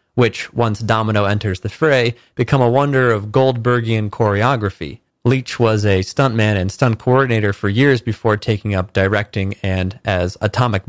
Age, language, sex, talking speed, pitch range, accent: 30-49, English, male, 155 wpm, 105-125 Hz, American